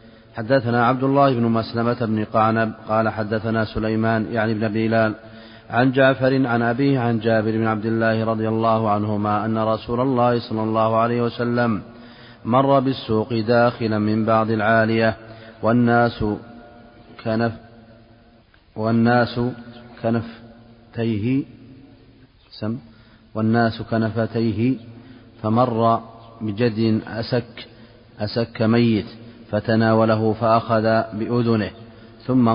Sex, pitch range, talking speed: male, 110-120 Hz, 100 wpm